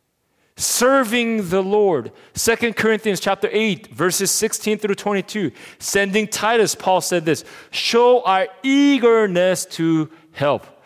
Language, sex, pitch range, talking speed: English, male, 130-190 Hz, 115 wpm